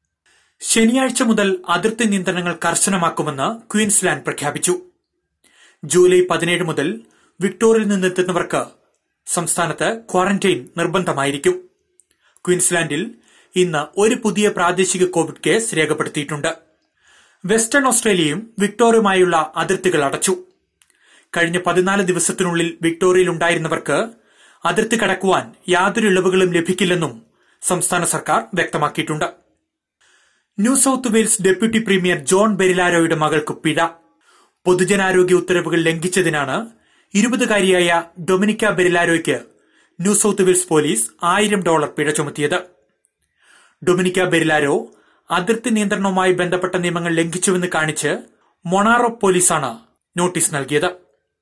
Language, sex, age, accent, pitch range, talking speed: Malayalam, male, 30-49, native, 165-200 Hz, 90 wpm